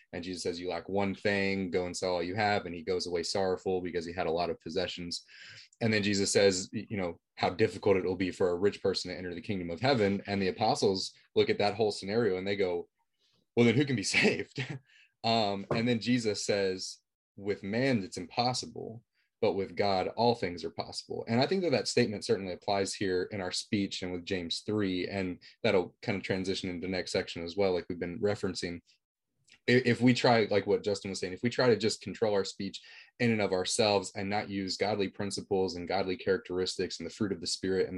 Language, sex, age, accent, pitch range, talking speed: English, male, 20-39, American, 90-105 Hz, 230 wpm